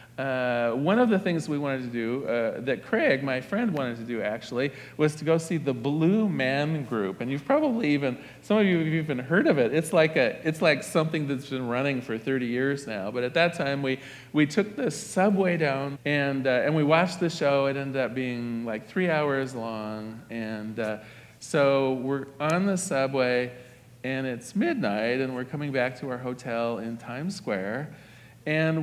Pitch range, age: 125-165 Hz, 40-59